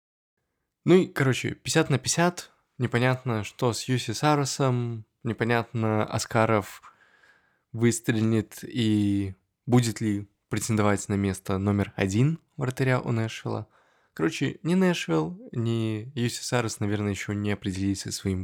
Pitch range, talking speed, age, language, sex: 105-130 Hz, 120 wpm, 20-39, Russian, male